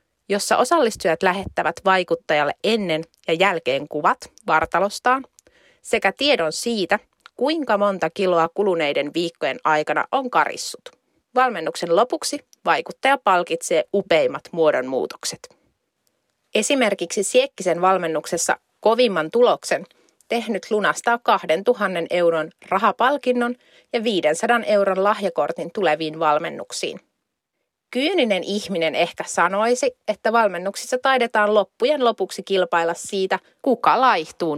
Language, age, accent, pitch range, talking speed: Finnish, 30-49, native, 175-245 Hz, 95 wpm